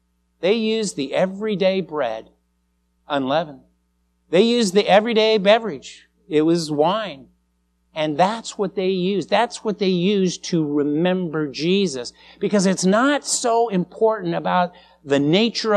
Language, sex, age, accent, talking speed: English, male, 50-69, American, 130 wpm